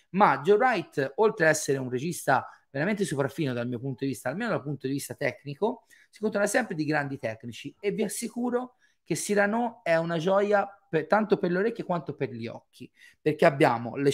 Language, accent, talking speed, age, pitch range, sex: Italian, native, 195 wpm, 30-49, 130-185 Hz, male